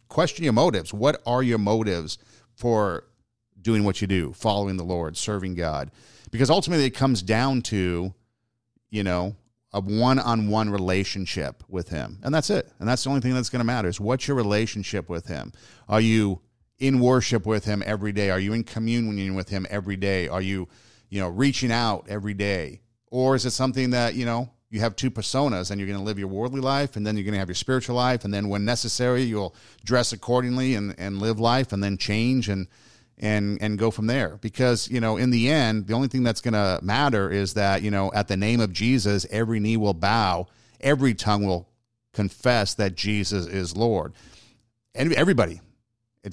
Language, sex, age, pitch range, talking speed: English, male, 50-69, 100-125 Hz, 200 wpm